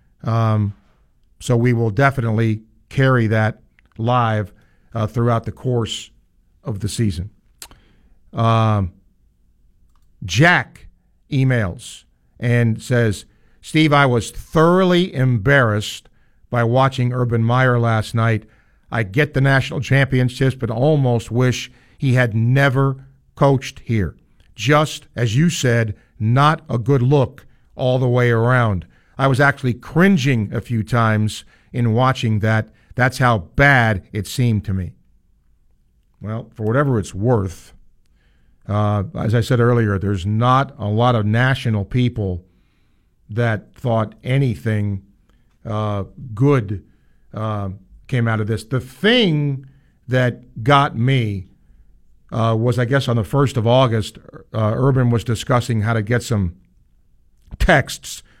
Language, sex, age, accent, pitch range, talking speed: English, male, 50-69, American, 105-130 Hz, 125 wpm